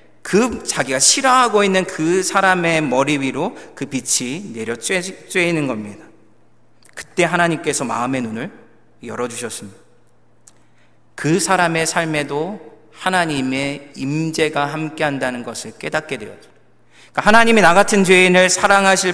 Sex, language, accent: male, Korean, native